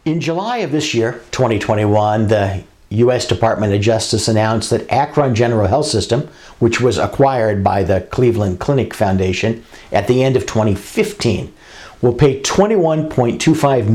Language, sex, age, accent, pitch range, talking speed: English, male, 50-69, American, 105-135 Hz, 140 wpm